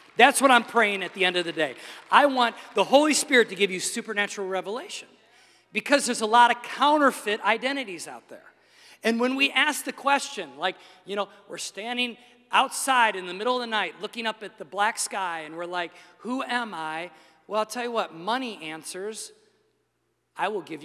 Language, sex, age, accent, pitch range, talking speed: English, male, 40-59, American, 185-250 Hz, 200 wpm